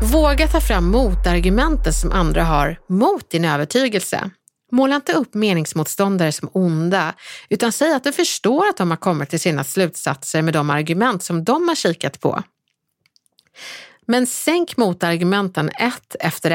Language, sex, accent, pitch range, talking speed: Swedish, female, native, 165-240 Hz, 150 wpm